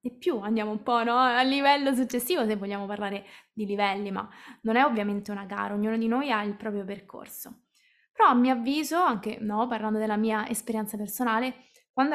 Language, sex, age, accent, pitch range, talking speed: Italian, female, 20-39, native, 210-255 Hz, 185 wpm